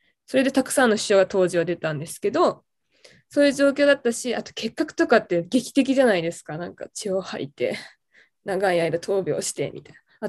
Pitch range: 180-255 Hz